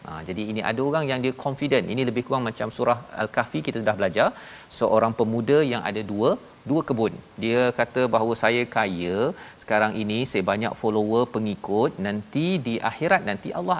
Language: Malayalam